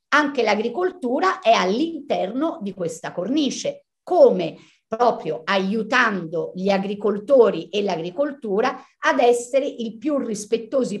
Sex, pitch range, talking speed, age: female, 195-250 Hz, 105 wpm, 50-69